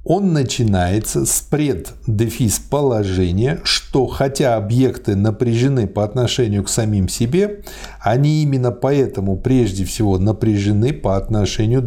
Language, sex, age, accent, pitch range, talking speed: Russian, male, 50-69, native, 105-140 Hz, 110 wpm